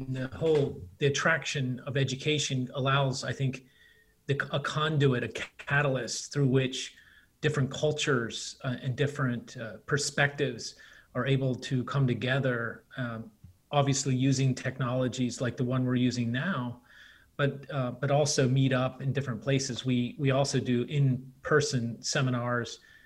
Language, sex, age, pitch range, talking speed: English, male, 30-49, 125-145 Hz, 140 wpm